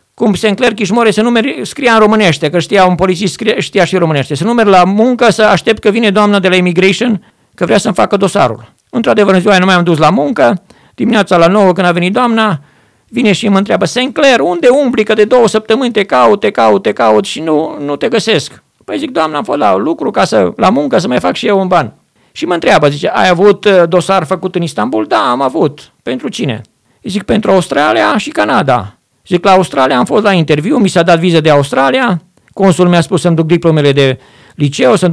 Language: Romanian